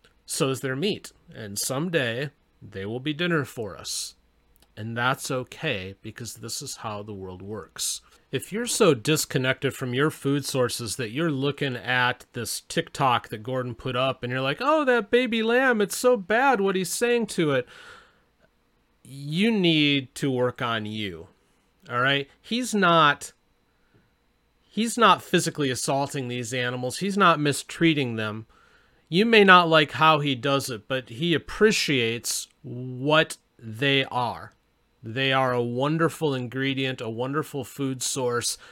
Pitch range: 120-155 Hz